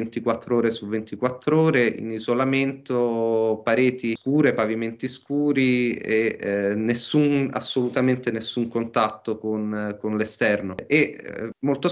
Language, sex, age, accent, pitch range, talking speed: Italian, male, 30-49, native, 115-130 Hz, 115 wpm